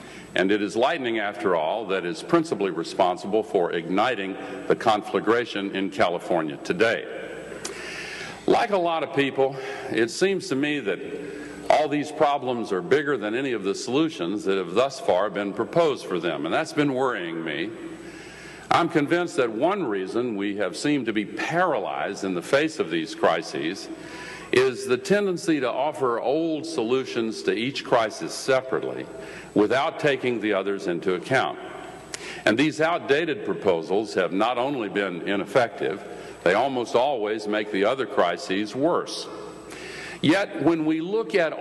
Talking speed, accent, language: 155 wpm, American, English